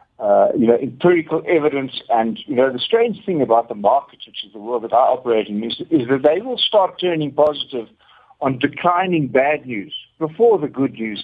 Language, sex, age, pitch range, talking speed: English, male, 60-79, 130-190 Hz, 205 wpm